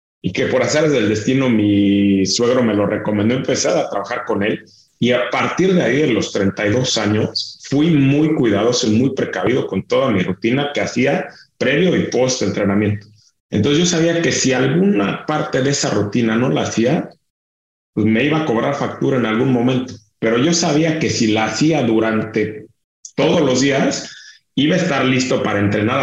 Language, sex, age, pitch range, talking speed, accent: English, male, 40-59, 110-140 Hz, 185 wpm, Mexican